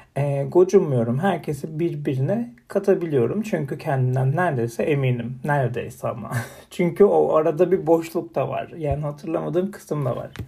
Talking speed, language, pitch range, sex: 125 wpm, Turkish, 130-185 Hz, male